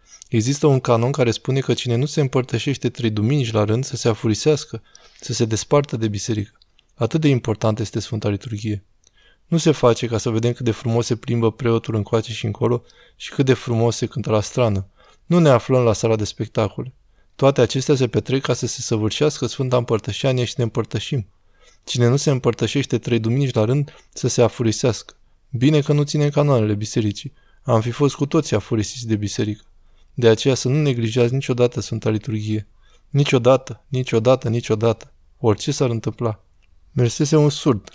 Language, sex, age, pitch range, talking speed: Romanian, male, 20-39, 110-130 Hz, 180 wpm